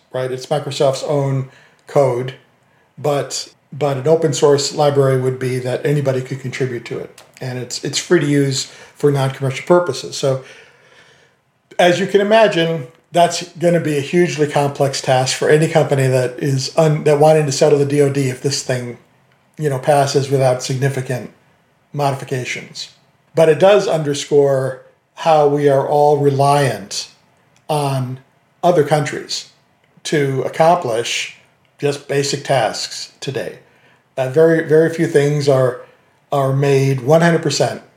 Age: 50-69